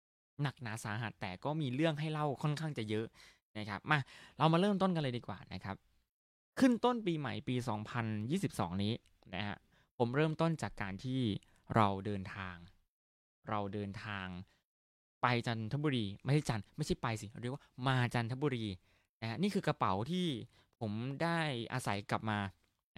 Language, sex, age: Thai, male, 20-39